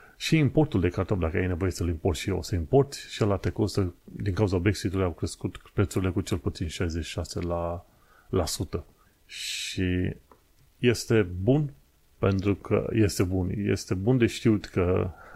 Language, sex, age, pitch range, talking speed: Romanian, male, 30-49, 90-115 Hz, 160 wpm